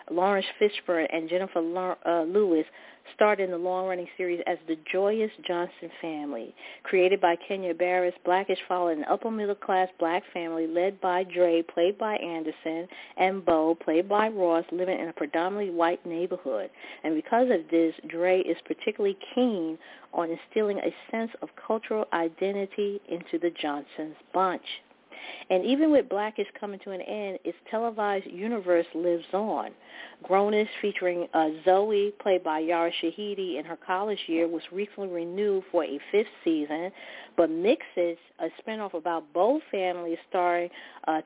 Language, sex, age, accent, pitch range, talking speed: English, female, 40-59, American, 170-205 Hz, 150 wpm